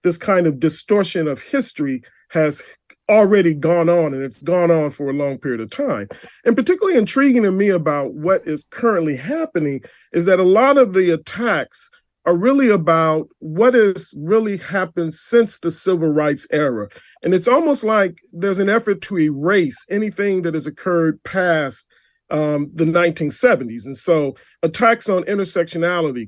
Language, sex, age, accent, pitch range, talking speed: English, male, 40-59, American, 155-205 Hz, 160 wpm